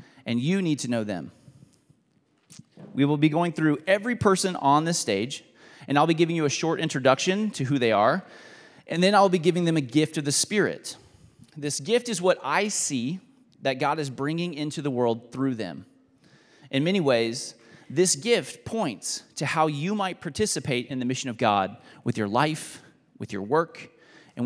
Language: English